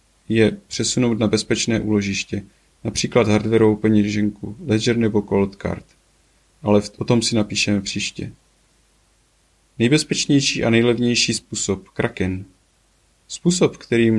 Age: 30-49